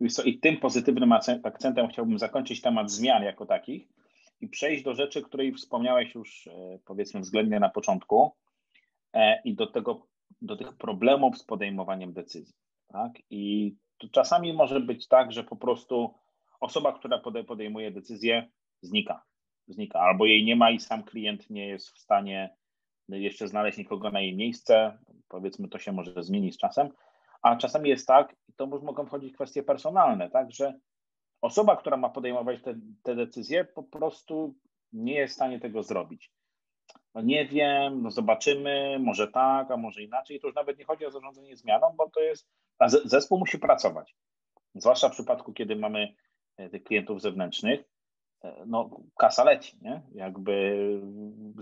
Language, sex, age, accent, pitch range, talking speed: Polish, male, 30-49, native, 110-180 Hz, 155 wpm